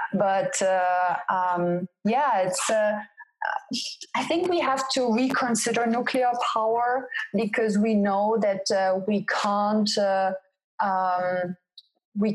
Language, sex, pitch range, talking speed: English, female, 175-205 Hz, 115 wpm